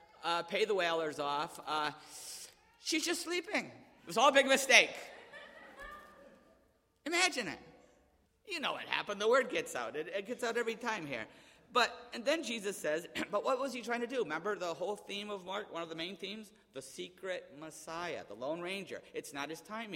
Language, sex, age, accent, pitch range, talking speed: English, male, 50-69, American, 160-225 Hz, 195 wpm